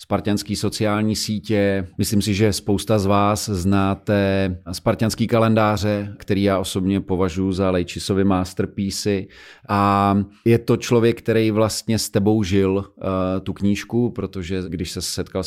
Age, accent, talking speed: 40-59, native, 130 wpm